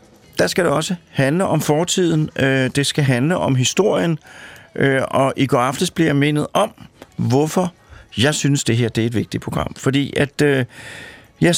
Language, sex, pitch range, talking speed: Danish, male, 125-155 Hz, 160 wpm